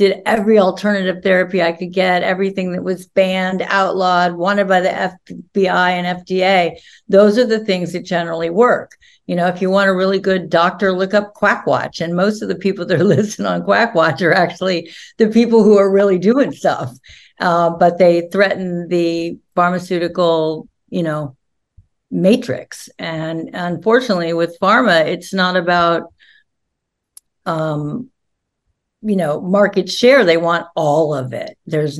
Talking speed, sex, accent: 160 wpm, female, American